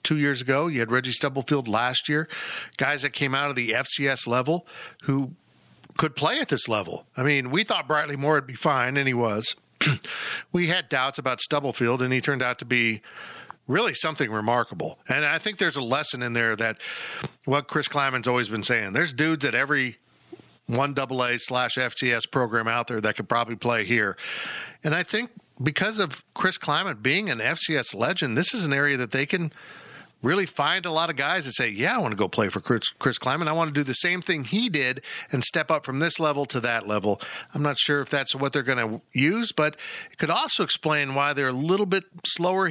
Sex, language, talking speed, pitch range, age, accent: male, English, 220 wpm, 120-155 Hz, 50-69, American